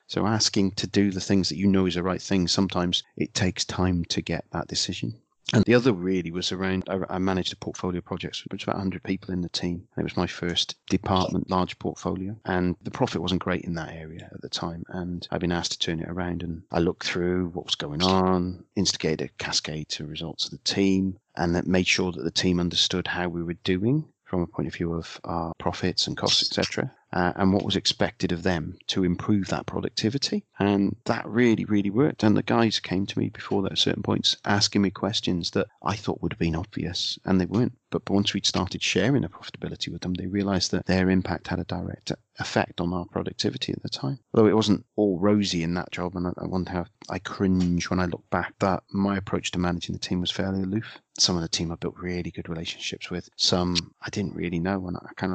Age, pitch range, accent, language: 30-49, 85-100 Hz, British, English